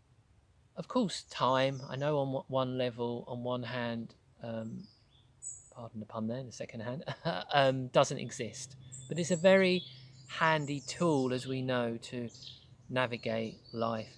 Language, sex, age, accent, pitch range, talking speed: English, male, 40-59, British, 120-165 Hz, 145 wpm